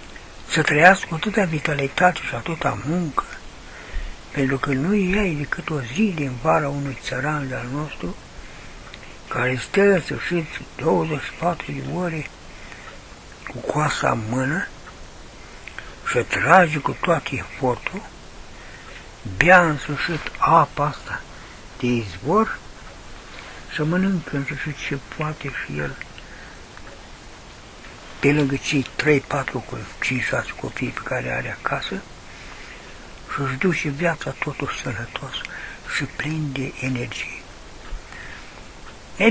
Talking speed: 115 wpm